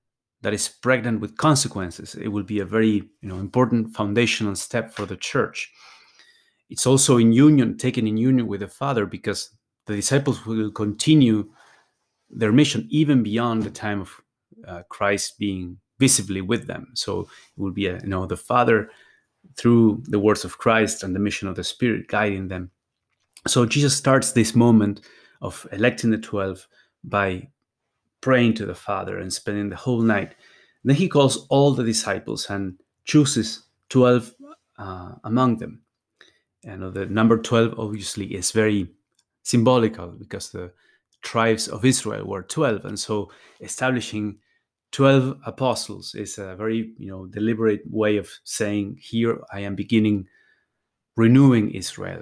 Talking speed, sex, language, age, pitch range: 155 wpm, male, English, 30-49, 100-120 Hz